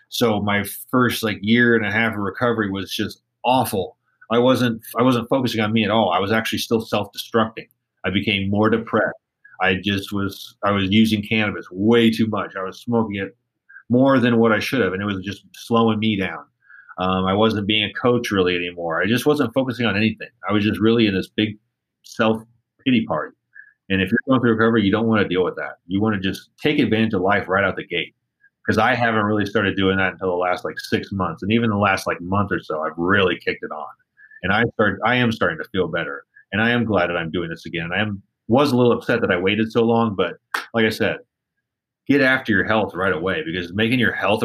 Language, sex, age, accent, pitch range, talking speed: English, male, 30-49, American, 100-115 Hz, 235 wpm